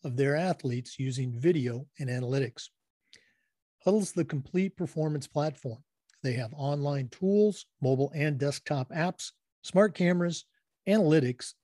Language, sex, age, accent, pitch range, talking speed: English, male, 50-69, American, 135-175 Hz, 120 wpm